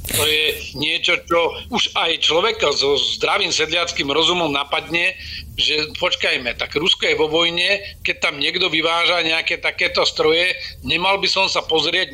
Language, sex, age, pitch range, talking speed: Slovak, male, 50-69, 155-180 Hz, 155 wpm